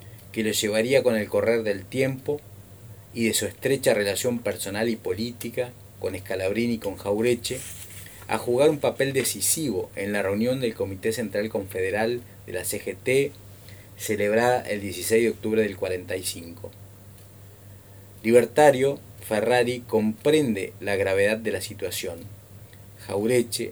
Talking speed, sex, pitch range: 130 wpm, male, 100-120 Hz